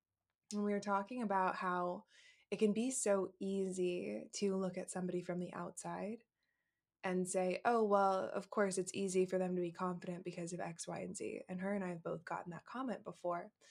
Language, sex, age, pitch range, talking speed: English, female, 20-39, 180-195 Hz, 205 wpm